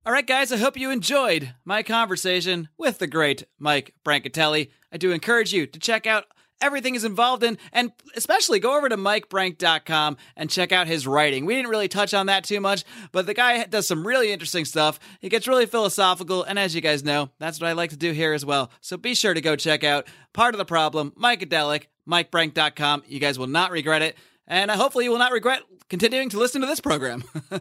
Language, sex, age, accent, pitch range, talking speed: English, male, 30-49, American, 165-240 Hz, 220 wpm